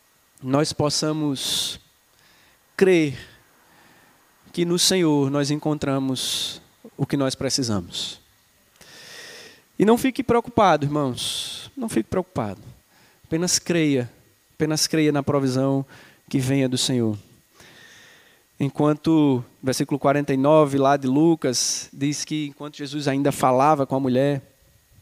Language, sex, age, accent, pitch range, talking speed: Portuguese, male, 20-39, Brazilian, 130-155 Hz, 110 wpm